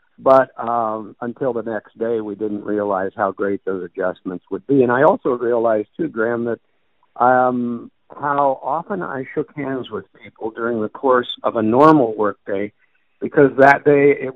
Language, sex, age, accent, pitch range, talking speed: English, male, 50-69, American, 110-135 Hz, 170 wpm